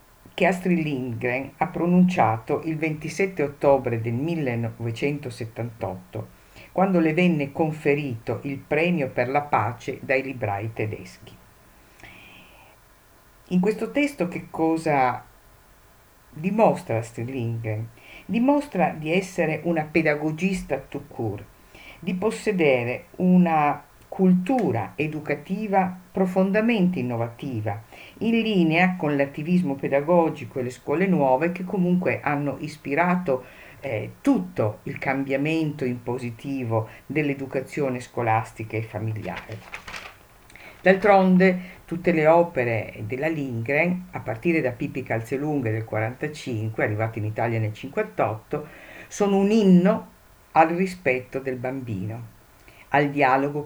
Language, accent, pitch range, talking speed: Italian, native, 120-175 Hz, 105 wpm